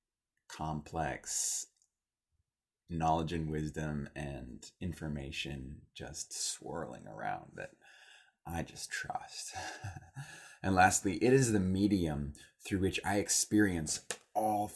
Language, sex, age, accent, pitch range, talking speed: English, male, 20-39, American, 80-105 Hz, 100 wpm